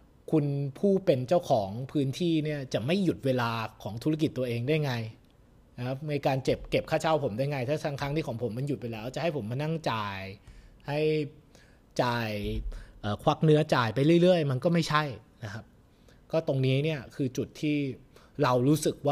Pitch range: 120-160 Hz